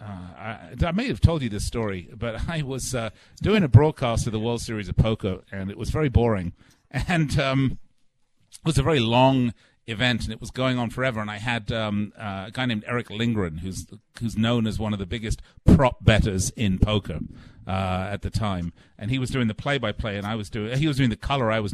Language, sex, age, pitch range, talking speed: English, male, 50-69, 110-140 Hz, 230 wpm